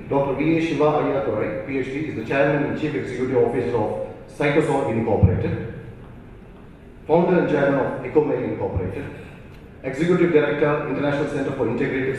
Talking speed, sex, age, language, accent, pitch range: 135 wpm, male, 40-59, English, Indian, 125-155 Hz